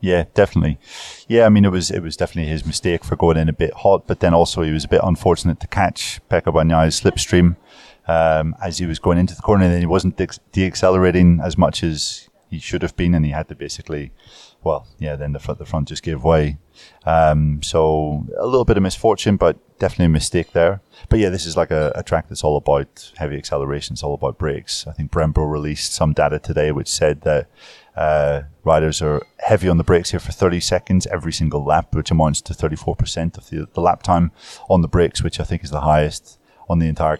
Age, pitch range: 30-49, 75-90 Hz